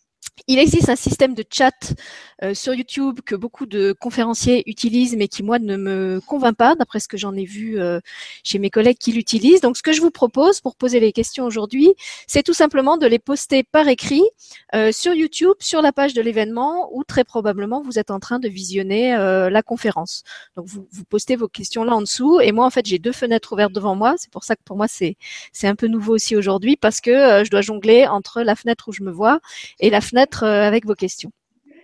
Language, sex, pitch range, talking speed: French, female, 205-260 Hz, 230 wpm